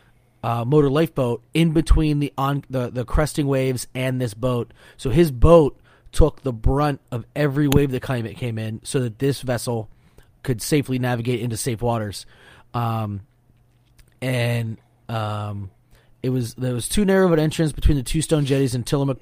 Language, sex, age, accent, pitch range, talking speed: English, male, 30-49, American, 115-135 Hz, 175 wpm